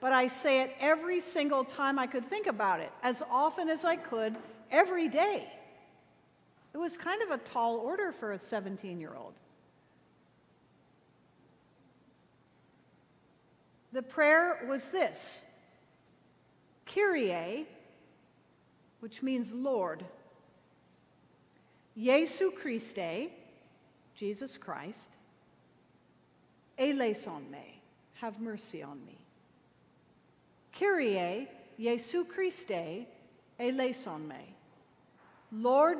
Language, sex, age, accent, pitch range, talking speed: English, female, 50-69, American, 230-320 Hz, 90 wpm